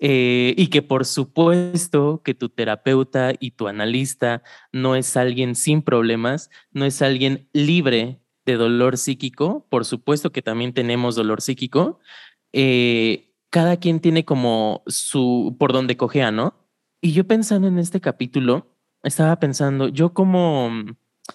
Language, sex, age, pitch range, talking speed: Spanish, male, 20-39, 125-160 Hz, 140 wpm